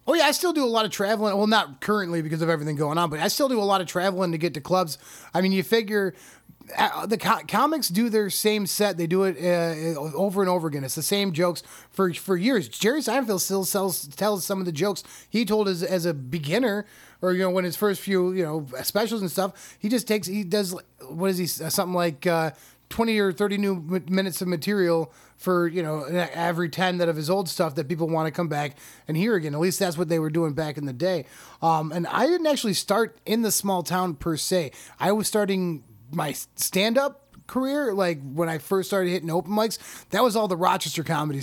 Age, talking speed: 20-39, 235 wpm